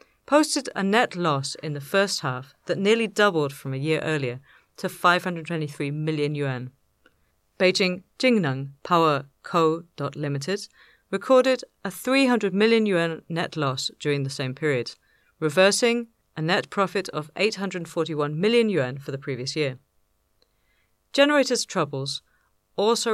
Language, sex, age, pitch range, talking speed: English, female, 40-59, 145-200 Hz, 130 wpm